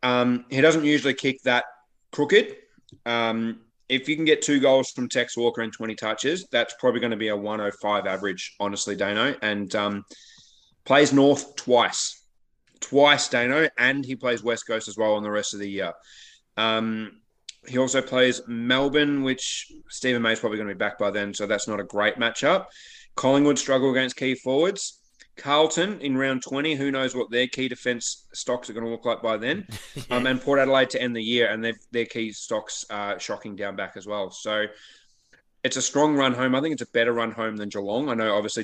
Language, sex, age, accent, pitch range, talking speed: English, male, 20-39, Australian, 105-130 Hz, 205 wpm